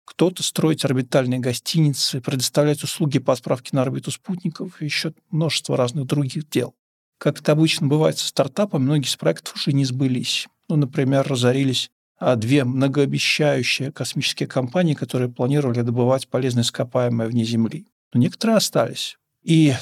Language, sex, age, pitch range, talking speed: Russian, male, 50-69, 130-155 Hz, 140 wpm